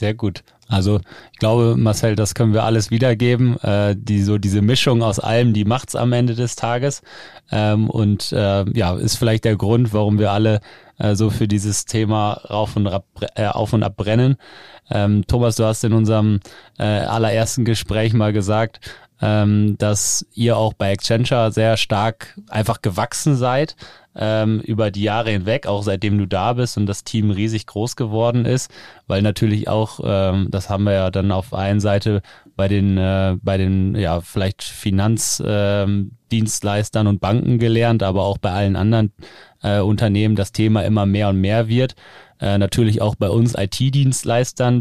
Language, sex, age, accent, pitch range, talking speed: German, male, 20-39, German, 100-115 Hz, 165 wpm